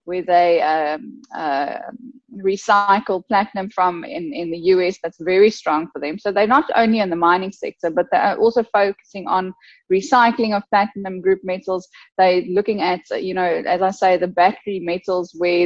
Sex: female